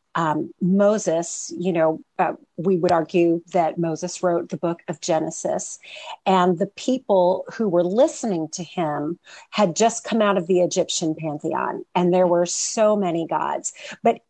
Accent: American